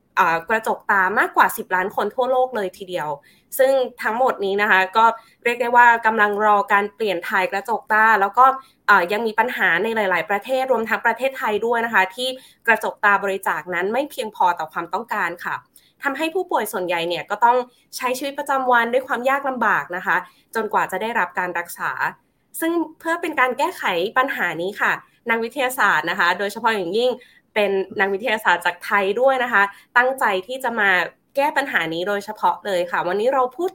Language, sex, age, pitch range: Thai, female, 20-39, 200-260 Hz